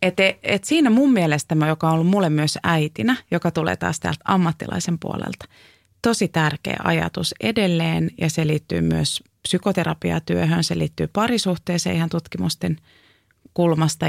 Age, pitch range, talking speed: 30-49, 150-195 Hz, 135 wpm